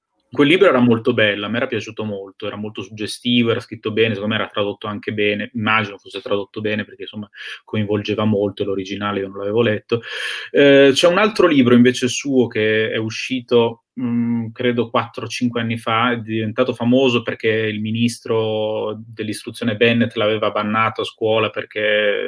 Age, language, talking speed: 20-39, Italian, 165 wpm